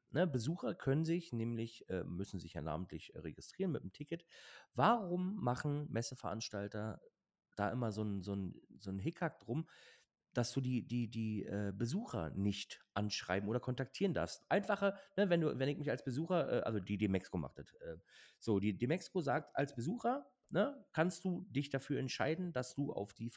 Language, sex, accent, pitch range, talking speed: German, male, German, 110-165 Hz, 180 wpm